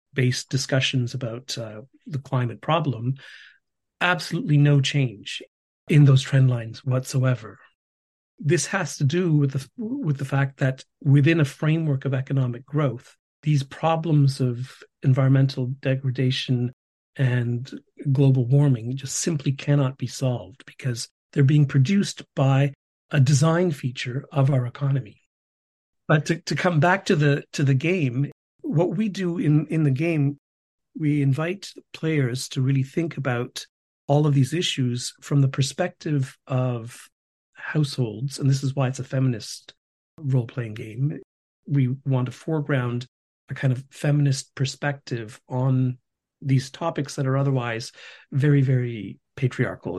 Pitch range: 125-145 Hz